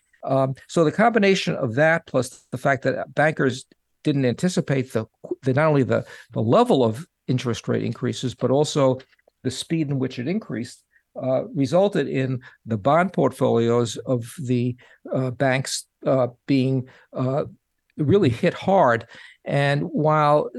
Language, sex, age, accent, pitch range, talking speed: English, male, 60-79, American, 125-155 Hz, 145 wpm